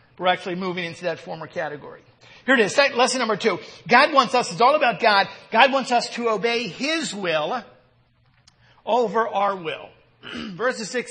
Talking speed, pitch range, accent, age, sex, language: 175 wpm, 200-255 Hz, American, 50-69, male, English